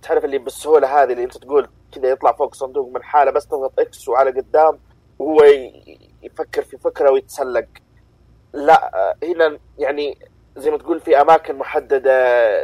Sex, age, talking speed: male, 30-49, 150 wpm